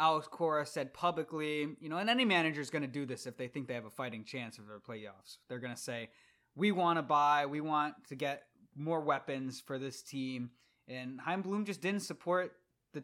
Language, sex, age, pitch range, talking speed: English, male, 20-39, 130-170 Hz, 225 wpm